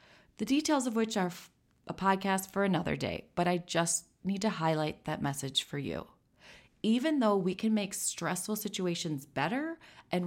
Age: 30-49